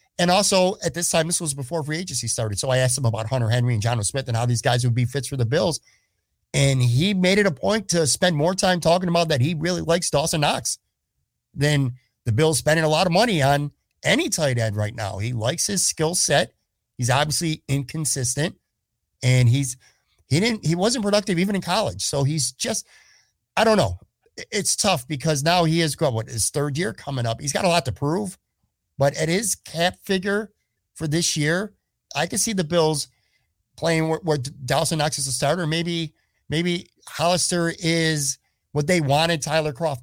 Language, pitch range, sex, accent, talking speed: English, 130-170 Hz, male, American, 205 wpm